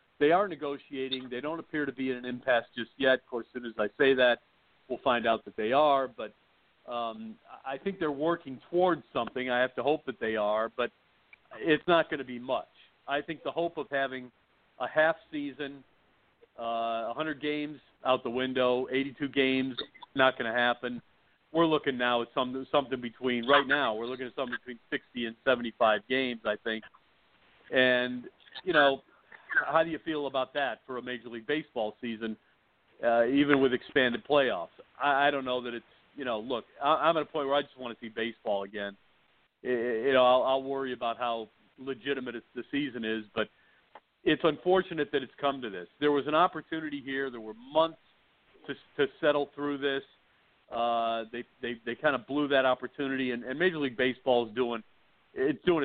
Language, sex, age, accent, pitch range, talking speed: English, male, 50-69, American, 120-145 Hz, 195 wpm